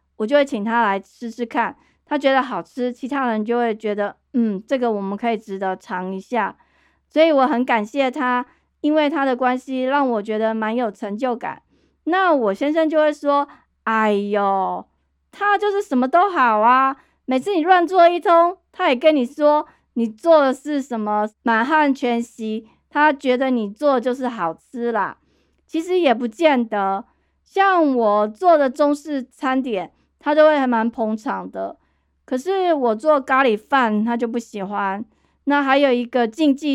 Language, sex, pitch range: Chinese, female, 220-290 Hz